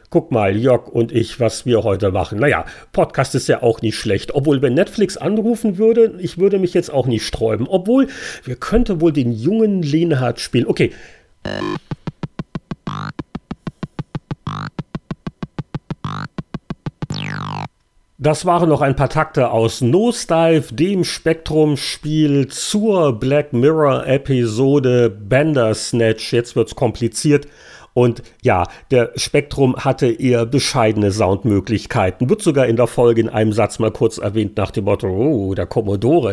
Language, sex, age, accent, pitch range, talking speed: German, male, 40-59, German, 115-160 Hz, 135 wpm